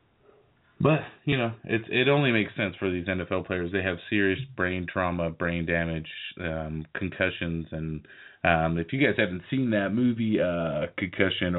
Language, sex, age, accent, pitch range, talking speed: English, male, 30-49, American, 80-95 Hz, 175 wpm